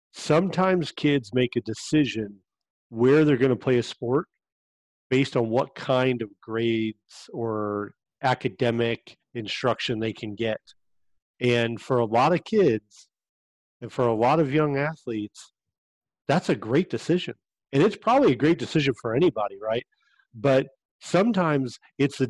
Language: English